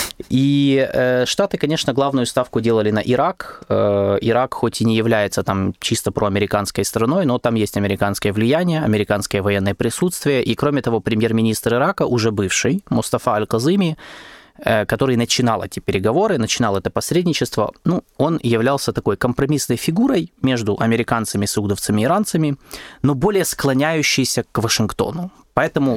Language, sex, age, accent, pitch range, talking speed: Russian, male, 20-39, native, 110-140 Hz, 140 wpm